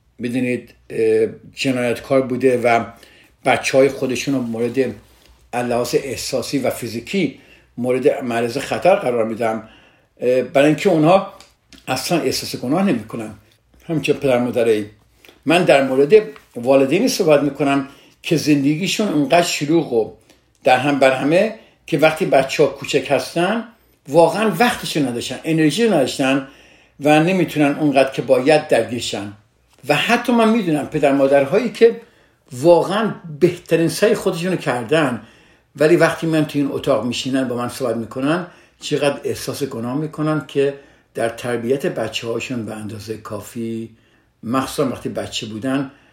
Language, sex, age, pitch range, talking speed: Persian, male, 60-79, 120-160 Hz, 125 wpm